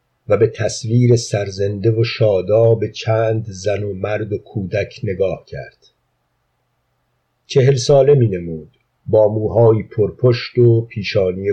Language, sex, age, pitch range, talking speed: Persian, male, 50-69, 105-125 Hz, 120 wpm